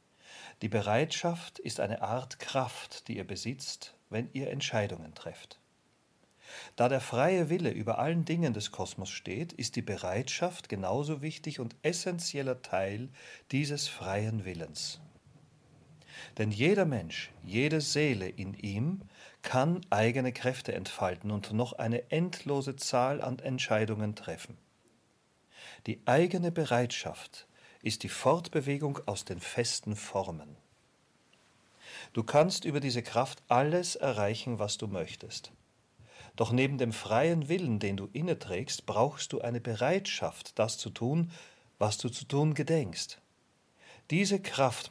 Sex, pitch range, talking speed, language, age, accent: male, 110-150 Hz, 130 wpm, German, 40-59, German